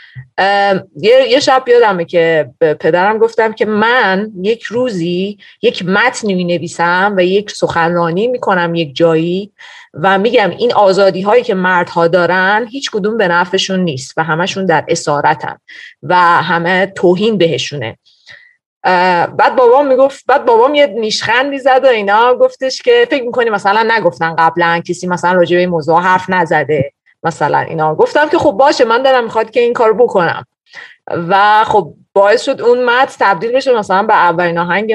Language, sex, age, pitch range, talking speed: Persian, female, 30-49, 170-245 Hz, 155 wpm